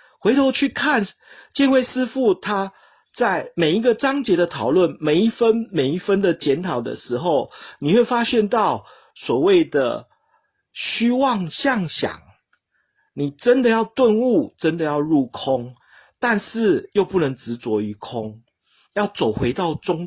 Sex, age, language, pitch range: male, 50-69, Chinese, 160-255 Hz